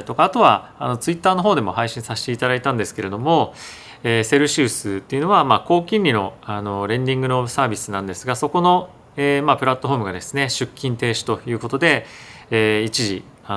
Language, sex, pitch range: Japanese, male, 105-140 Hz